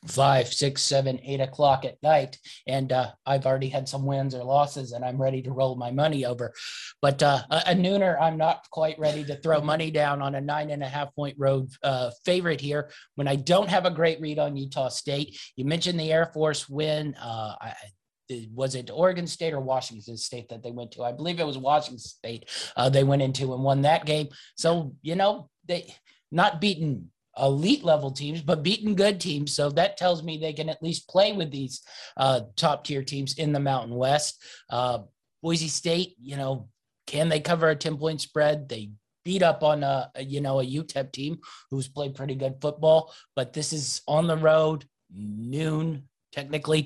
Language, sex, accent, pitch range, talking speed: English, male, American, 135-160 Hz, 200 wpm